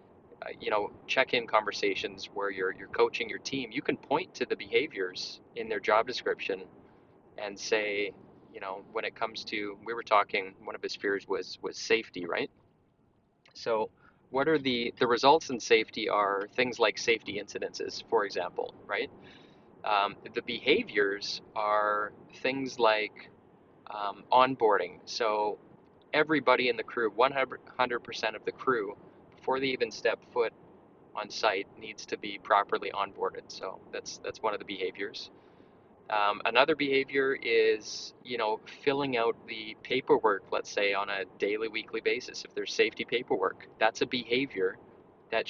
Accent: American